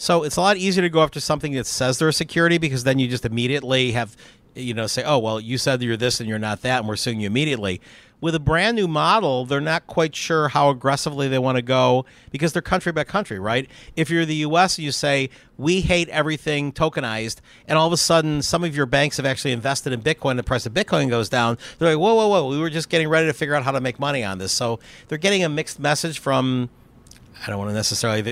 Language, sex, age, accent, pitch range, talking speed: English, male, 50-69, American, 120-155 Hz, 255 wpm